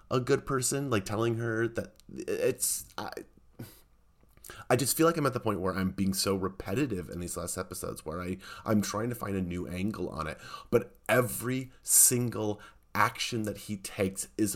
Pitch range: 90-115 Hz